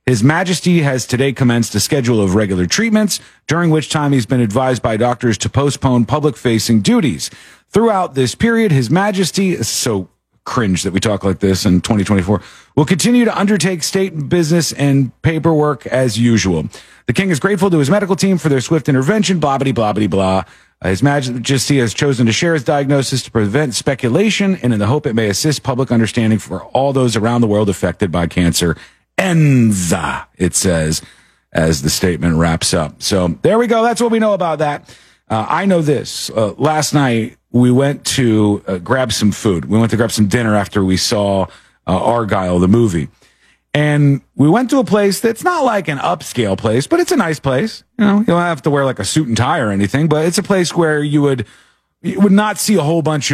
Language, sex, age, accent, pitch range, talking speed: English, male, 40-59, American, 110-165 Hz, 205 wpm